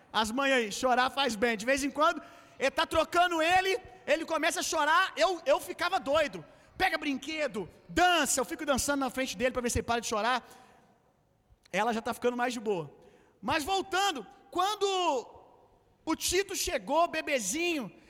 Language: Gujarati